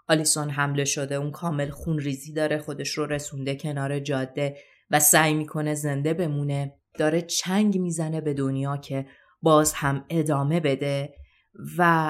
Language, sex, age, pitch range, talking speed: Persian, female, 30-49, 145-190 Hz, 145 wpm